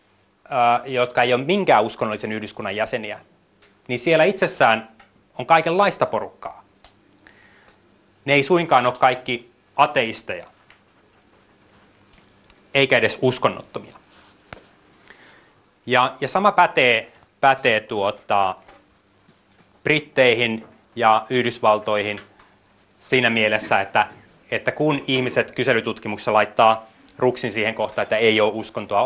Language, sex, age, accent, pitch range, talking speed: Finnish, male, 30-49, native, 110-140 Hz, 95 wpm